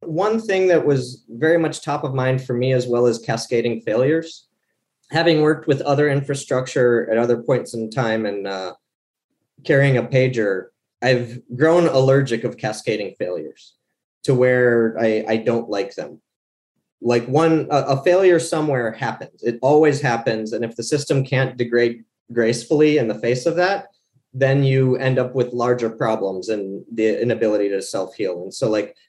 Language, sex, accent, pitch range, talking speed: English, male, American, 115-145 Hz, 165 wpm